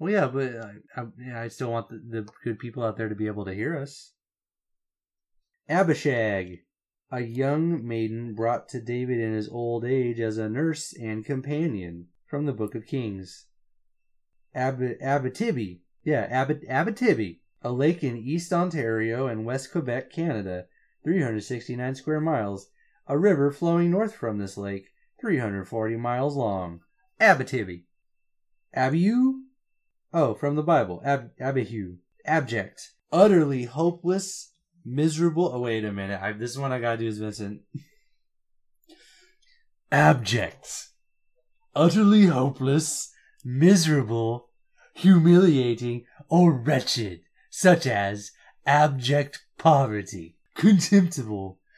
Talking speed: 120 wpm